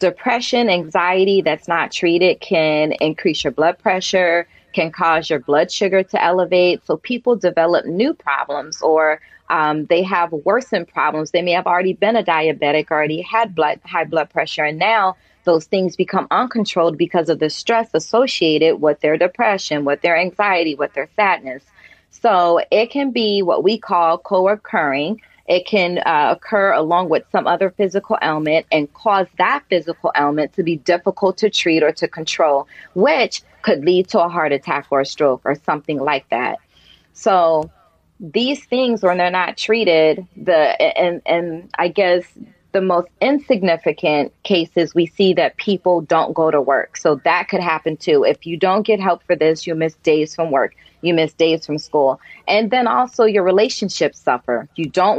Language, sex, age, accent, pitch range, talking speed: English, female, 30-49, American, 160-195 Hz, 175 wpm